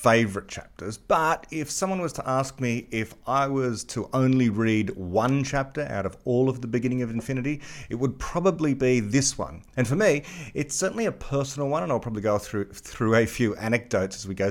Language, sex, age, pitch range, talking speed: English, male, 30-49, 105-140 Hz, 210 wpm